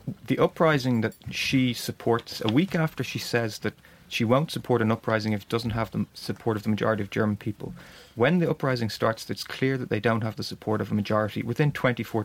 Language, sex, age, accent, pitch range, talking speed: English, male, 30-49, Irish, 105-120 Hz, 220 wpm